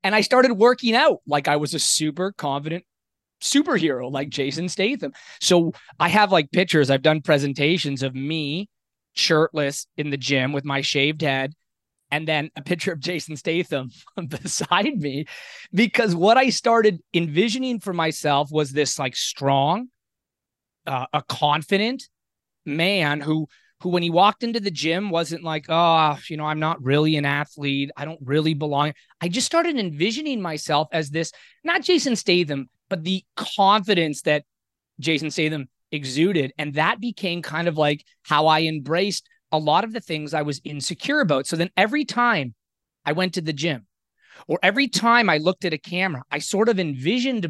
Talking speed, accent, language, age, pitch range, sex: 170 wpm, American, English, 20-39, 145-190 Hz, male